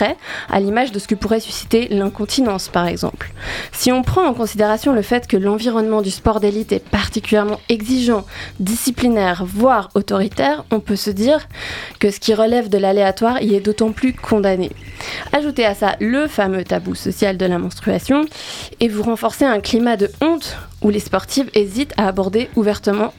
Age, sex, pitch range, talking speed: 20-39, female, 200-255 Hz, 175 wpm